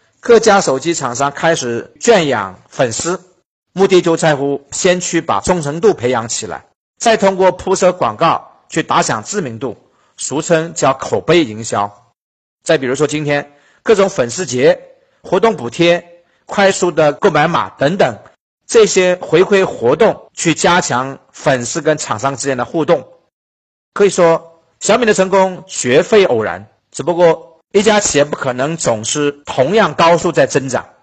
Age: 50-69